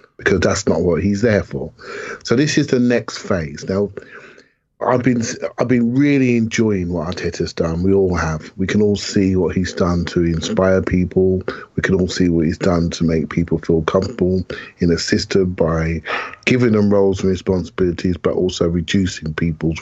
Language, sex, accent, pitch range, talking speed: English, male, British, 85-110 Hz, 185 wpm